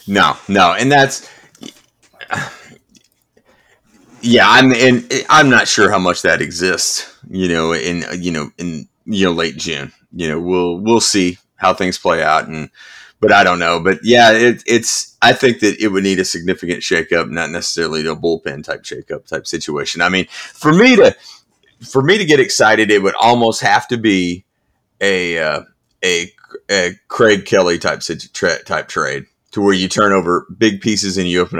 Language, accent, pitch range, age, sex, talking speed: English, American, 90-120 Hz, 30-49, male, 180 wpm